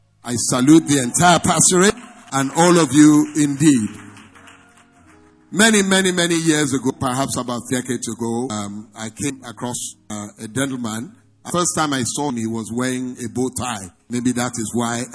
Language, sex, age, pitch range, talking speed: English, male, 50-69, 115-155 Hz, 165 wpm